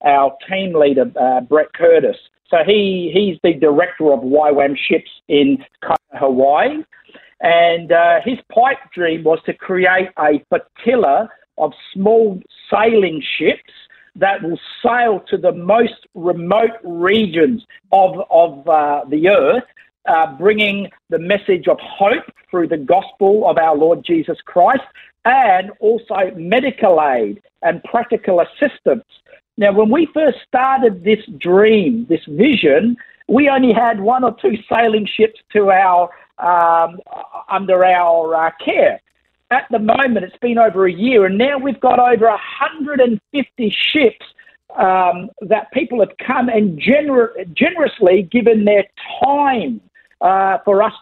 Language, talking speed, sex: English, 140 wpm, male